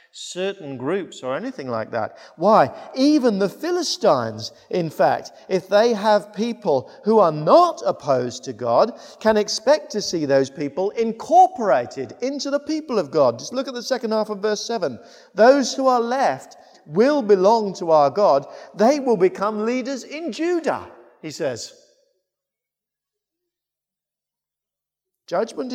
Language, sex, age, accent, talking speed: English, male, 50-69, British, 140 wpm